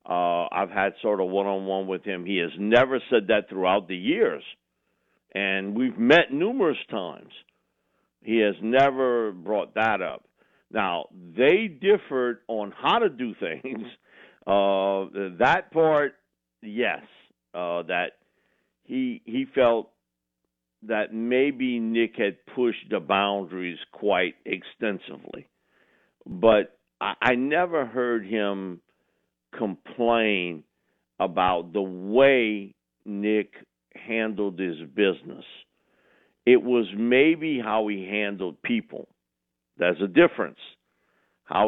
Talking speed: 110 wpm